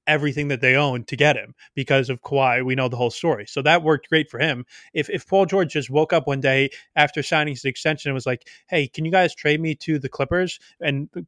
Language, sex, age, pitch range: English, male, 20-39, 135-155 Hz